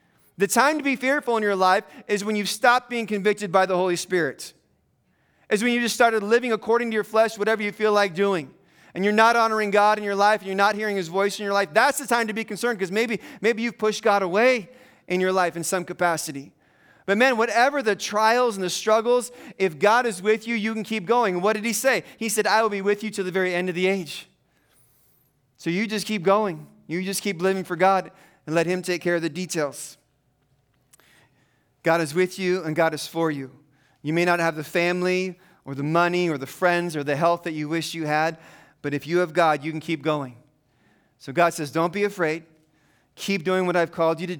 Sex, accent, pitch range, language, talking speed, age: male, American, 155-210 Hz, English, 235 wpm, 30-49